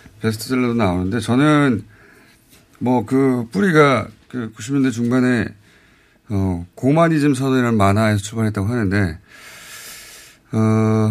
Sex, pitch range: male, 105-140 Hz